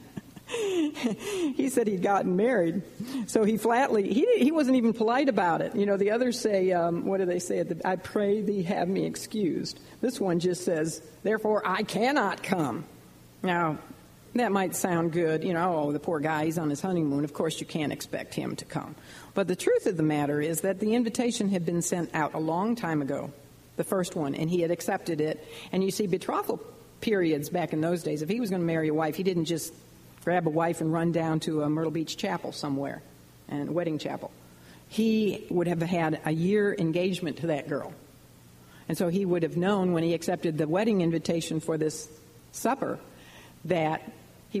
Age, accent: 50-69, American